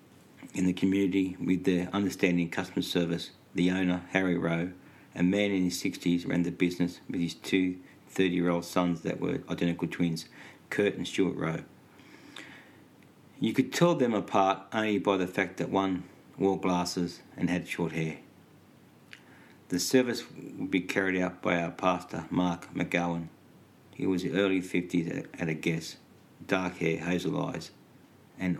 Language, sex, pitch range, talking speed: English, male, 85-95 Hz, 155 wpm